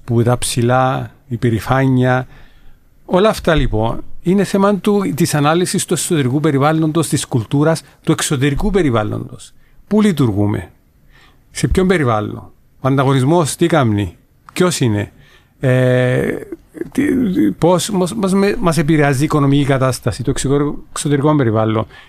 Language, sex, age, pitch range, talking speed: English, male, 50-69, 125-170 Hz, 105 wpm